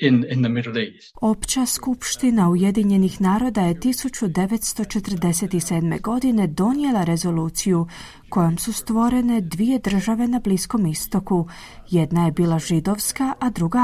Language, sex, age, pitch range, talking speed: Croatian, female, 30-49, 170-230 Hz, 115 wpm